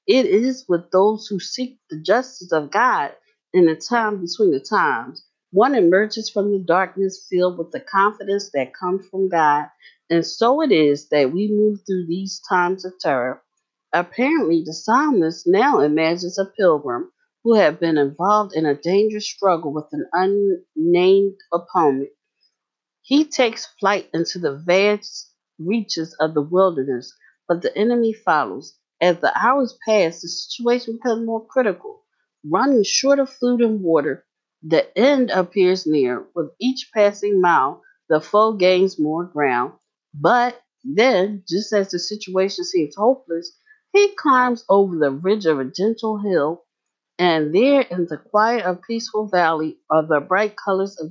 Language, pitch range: English, 170-230 Hz